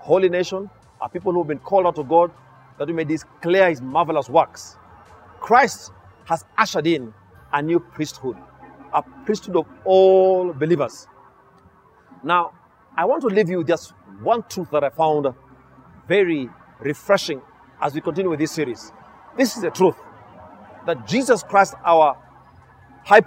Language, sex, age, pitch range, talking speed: English, male, 40-59, 140-195 Hz, 155 wpm